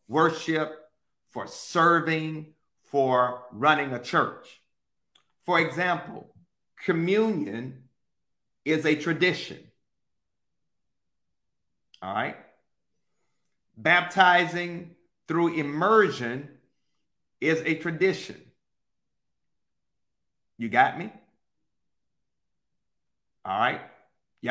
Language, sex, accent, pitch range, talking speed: English, male, American, 115-155 Hz, 60 wpm